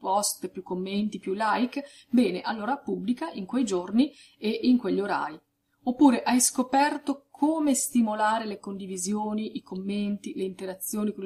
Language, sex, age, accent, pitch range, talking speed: Italian, female, 30-49, native, 195-260 Hz, 140 wpm